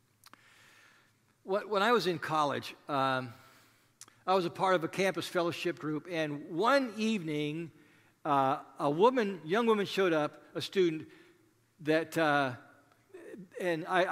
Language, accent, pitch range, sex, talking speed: English, American, 145-220 Hz, male, 130 wpm